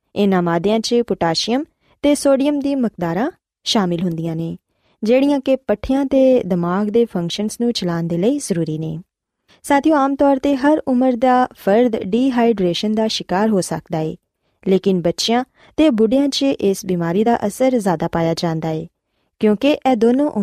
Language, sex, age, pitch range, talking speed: Punjabi, female, 20-39, 180-260 Hz, 160 wpm